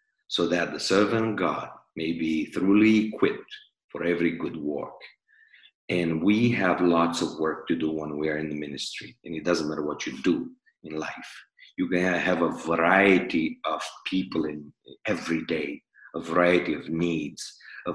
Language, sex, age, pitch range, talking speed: English, male, 50-69, 85-125 Hz, 175 wpm